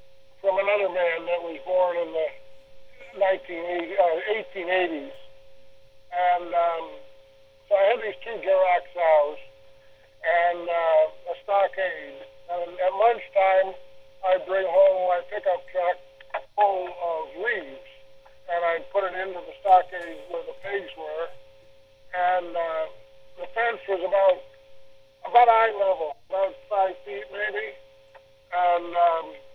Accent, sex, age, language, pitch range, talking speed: American, male, 60-79, English, 140-195 Hz, 125 wpm